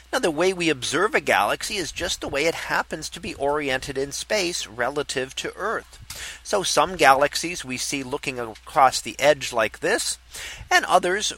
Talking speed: 180 wpm